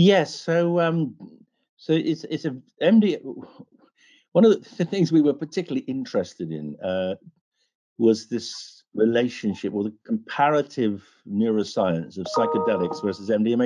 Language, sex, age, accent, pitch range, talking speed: English, male, 50-69, British, 105-165 Hz, 125 wpm